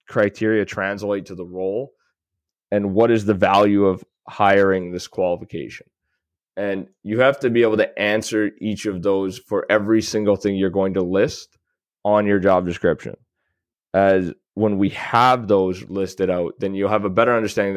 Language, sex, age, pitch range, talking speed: English, male, 20-39, 95-110 Hz, 170 wpm